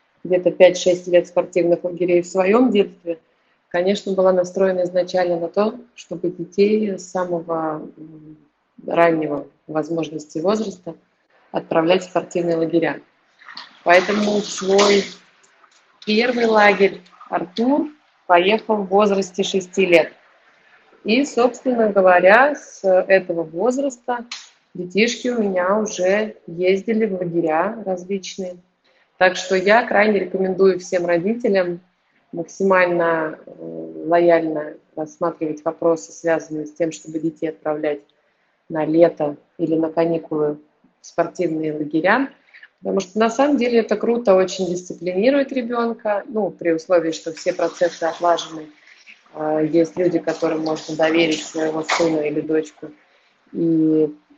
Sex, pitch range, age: female, 165-195 Hz, 30-49